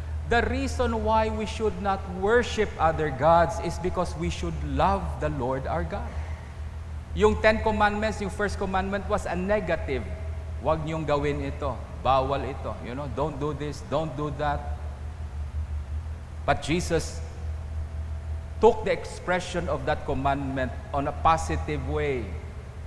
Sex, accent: male, Filipino